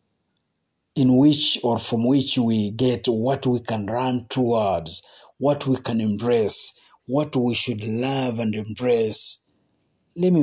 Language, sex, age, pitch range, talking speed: Swahili, male, 50-69, 110-135 Hz, 140 wpm